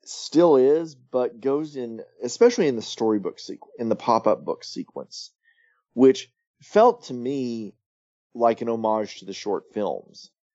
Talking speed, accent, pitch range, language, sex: 155 wpm, American, 110-180 Hz, English, male